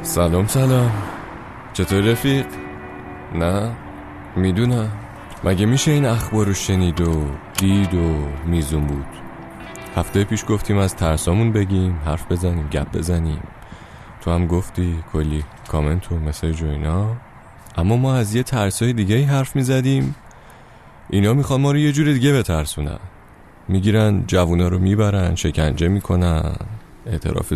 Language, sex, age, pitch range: Persian, male, 30-49, 85-125 Hz